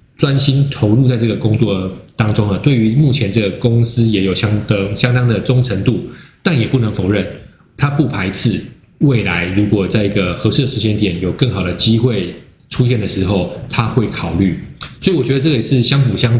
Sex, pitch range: male, 100-130 Hz